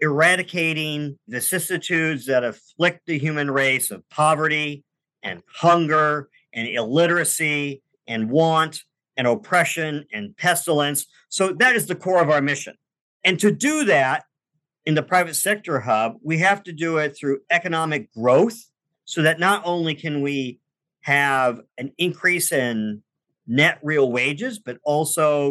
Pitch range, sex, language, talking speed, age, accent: 145-185 Hz, male, English, 140 wpm, 50-69, American